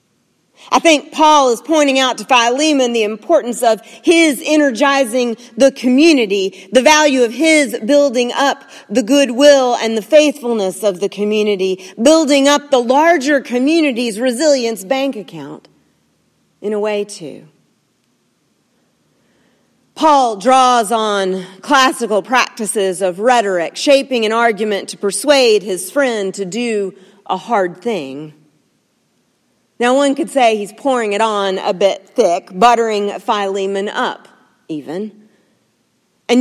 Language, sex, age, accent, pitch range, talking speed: English, female, 40-59, American, 205-270 Hz, 125 wpm